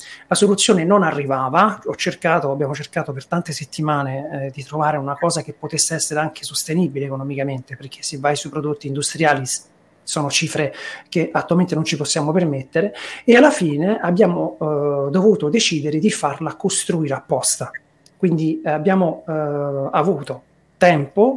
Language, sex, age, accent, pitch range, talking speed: Italian, male, 40-59, native, 145-180 Hz, 140 wpm